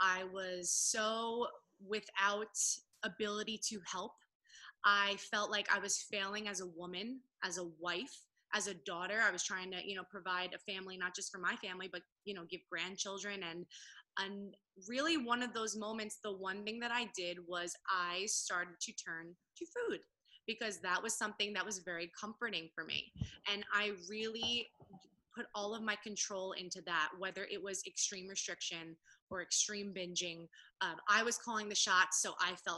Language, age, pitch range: English, 20-39, 185-220 Hz